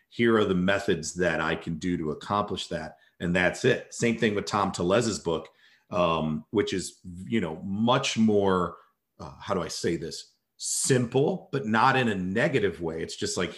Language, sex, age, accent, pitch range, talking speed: English, male, 40-59, American, 90-125 Hz, 190 wpm